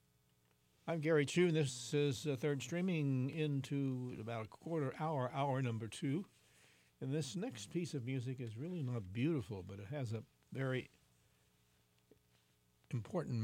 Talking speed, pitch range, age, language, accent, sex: 145 wpm, 100-150 Hz, 60-79, English, American, male